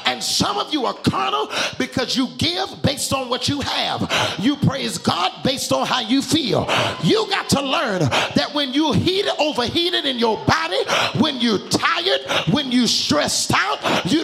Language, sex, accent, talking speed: English, male, American, 175 wpm